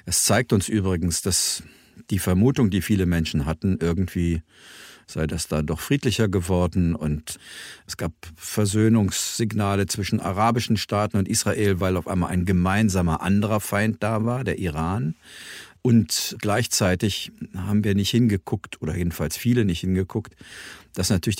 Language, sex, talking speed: German, male, 145 wpm